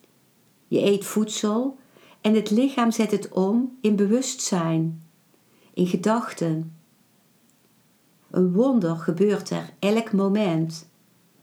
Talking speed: 100 wpm